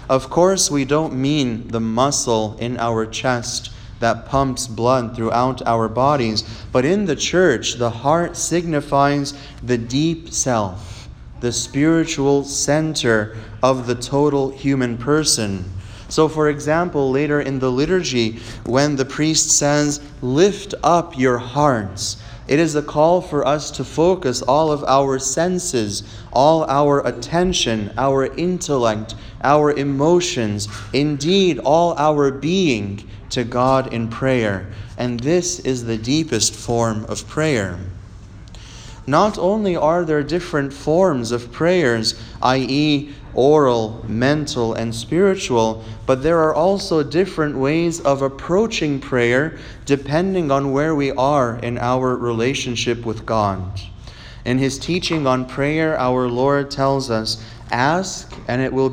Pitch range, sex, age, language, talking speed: 115-150 Hz, male, 30-49, English, 130 wpm